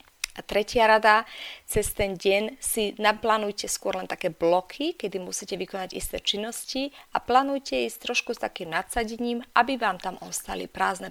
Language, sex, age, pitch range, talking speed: Slovak, female, 30-49, 185-235 Hz, 155 wpm